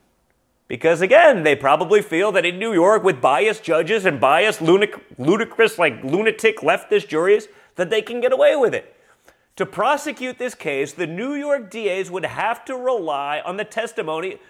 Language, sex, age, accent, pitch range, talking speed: English, male, 30-49, American, 205-290 Hz, 175 wpm